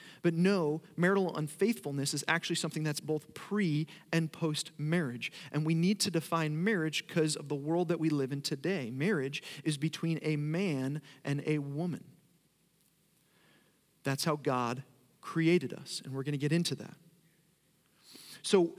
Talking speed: 155 wpm